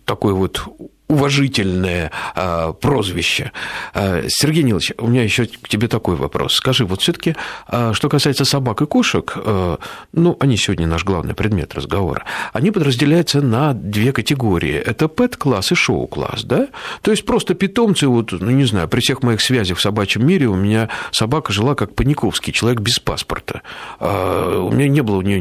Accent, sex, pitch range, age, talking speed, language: native, male, 105-150 Hz, 50-69, 175 wpm, Russian